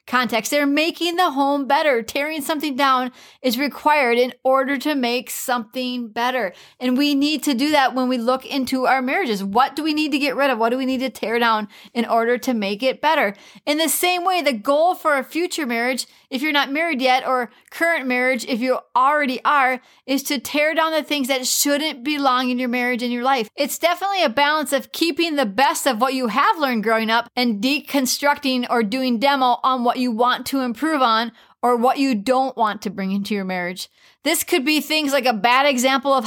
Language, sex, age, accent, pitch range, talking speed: English, female, 30-49, American, 245-290 Hz, 220 wpm